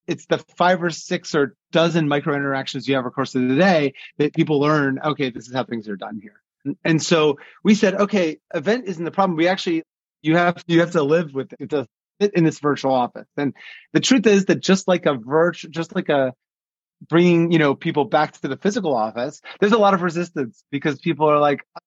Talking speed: 230 wpm